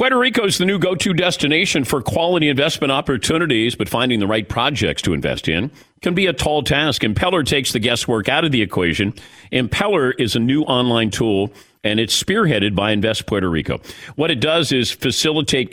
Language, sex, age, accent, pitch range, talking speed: English, male, 50-69, American, 105-145 Hz, 190 wpm